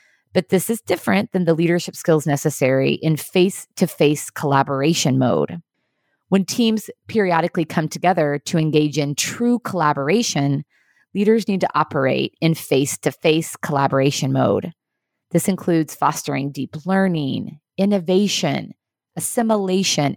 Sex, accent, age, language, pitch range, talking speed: female, American, 30-49, English, 155-225 Hz, 115 wpm